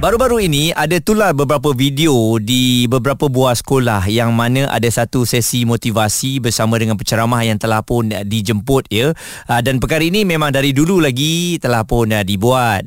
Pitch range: 110-140 Hz